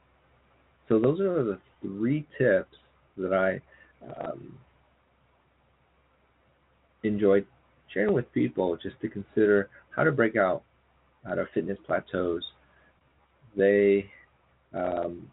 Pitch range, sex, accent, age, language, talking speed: 75-105 Hz, male, American, 30-49, English, 100 wpm